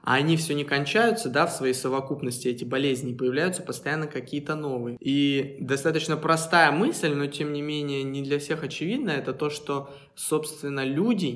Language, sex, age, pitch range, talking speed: Russian, male, 20-39, 130-155 Hz, 170 wpm